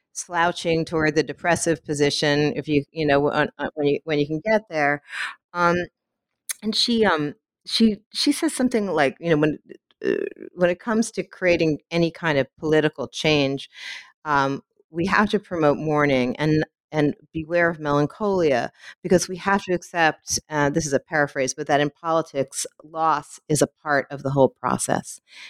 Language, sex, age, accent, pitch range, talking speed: English, female, 40-59, American, 145-175 Hz, 170 wpm